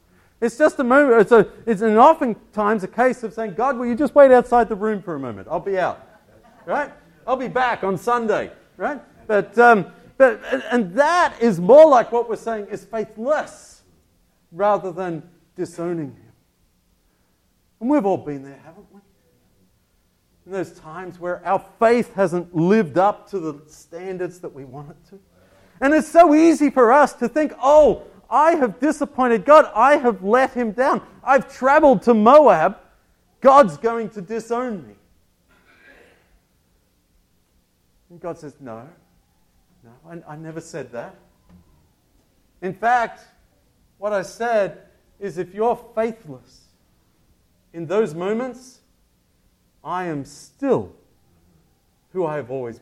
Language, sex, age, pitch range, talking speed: English, male, 40-59, 145-240 Hz, 145 wpm